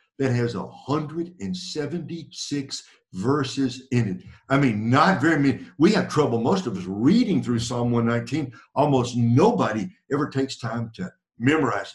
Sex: male